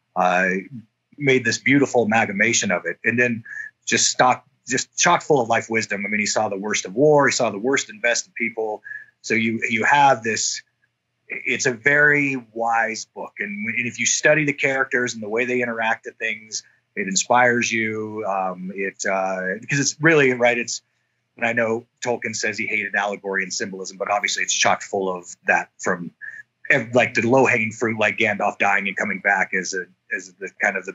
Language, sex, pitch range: English, male, 100-125 Hz